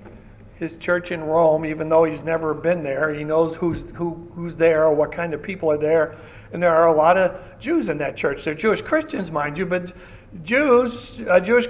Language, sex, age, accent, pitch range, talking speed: English, male, 60-79, American, 155-215 Hz, 215 wpm